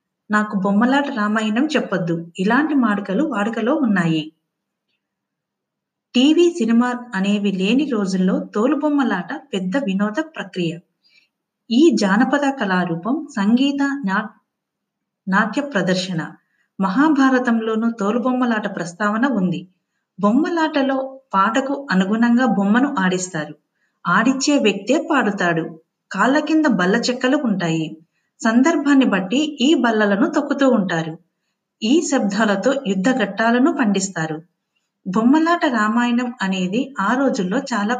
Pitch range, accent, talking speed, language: 195-265 Hz, native, 85 wpm, Telugu